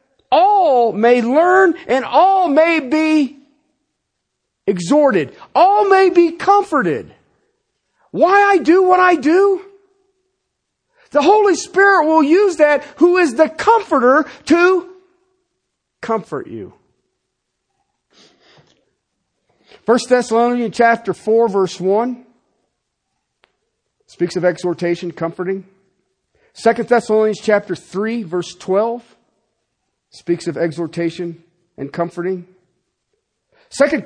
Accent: American